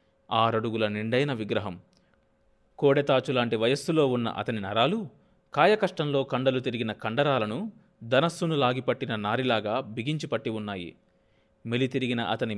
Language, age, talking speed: Telugu, 30-49, 95 wpm